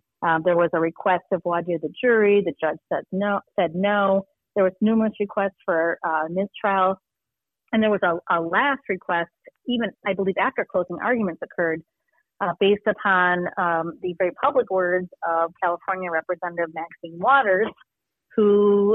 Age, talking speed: 30-49, 160 wpm